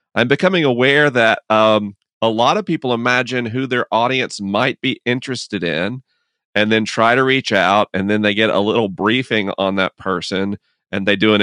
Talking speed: 195 wpm